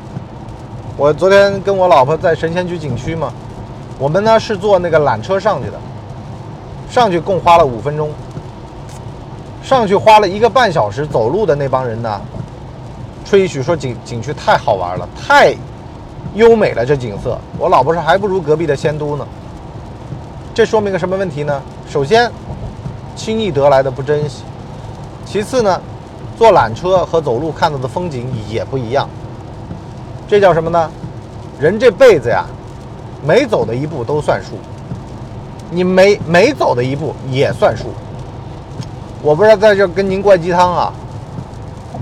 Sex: male